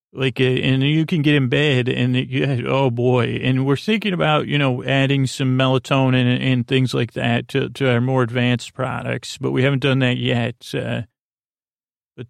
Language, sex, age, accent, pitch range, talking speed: English, male, 40-59, American, 125-145 Hz, 190 wpm